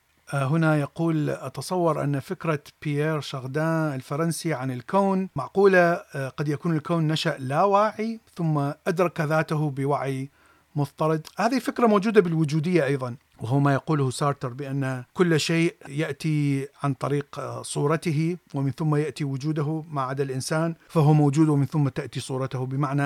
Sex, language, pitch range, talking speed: male, Arabic, 135-165 Hz, 135 wpm